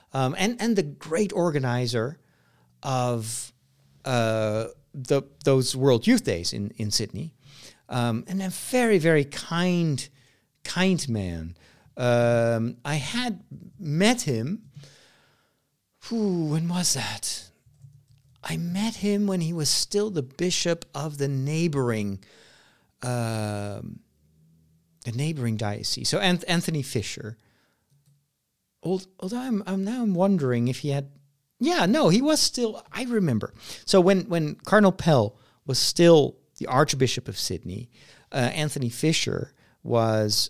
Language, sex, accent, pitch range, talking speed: English, male, American, 115-175 Hz, 125 wpm